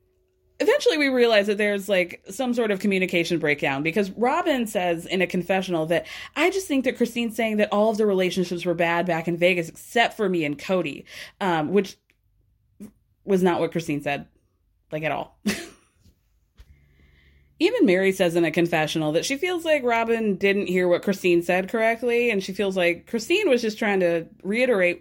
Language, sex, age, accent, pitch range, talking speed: English, female, 20-39, American, 155-210 Hz, 180 wpm